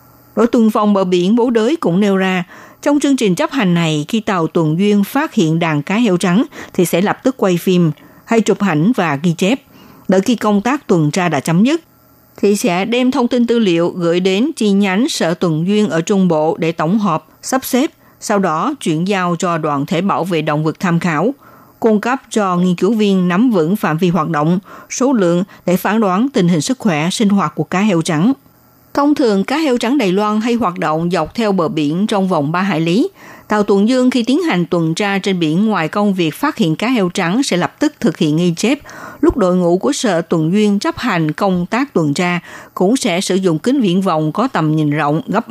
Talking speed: 235 wpm